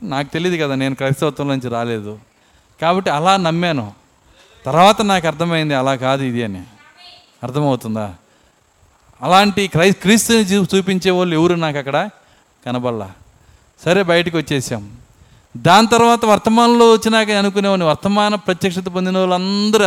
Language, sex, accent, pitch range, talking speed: Telugu, male, native, 145-230 Hz, 110 wpm